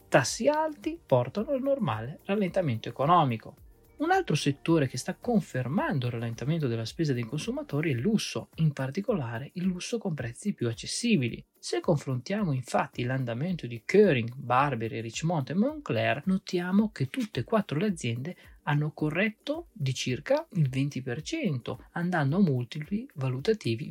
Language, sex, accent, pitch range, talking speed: Italian, male, native, 125-195 Hz, 145 wpm